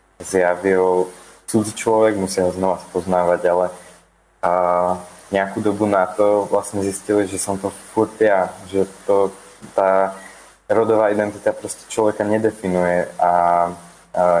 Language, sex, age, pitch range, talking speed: Slovak, male, 20-39, 90-100 Hz, 125 wpm